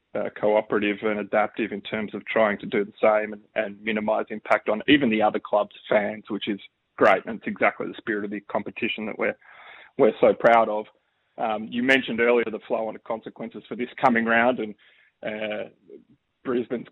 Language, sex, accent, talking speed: English, male, Australian, 195 wpm